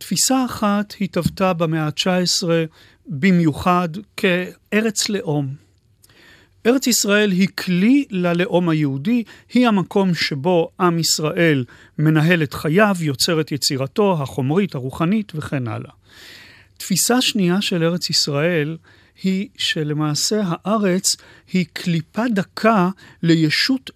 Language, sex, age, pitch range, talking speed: Hebrew, male, 40-59, 150-205 Hz, 105 wpm